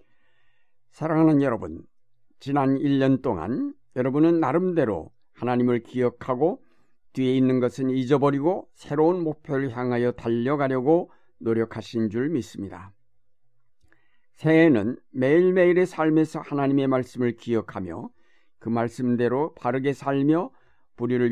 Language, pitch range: Korean, 115-145 Hz